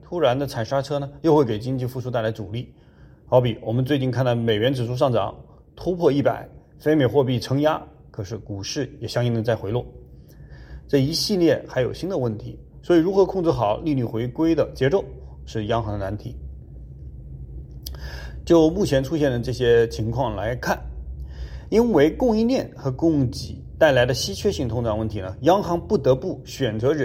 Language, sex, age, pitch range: English, male, 30-49, 110-145 Hz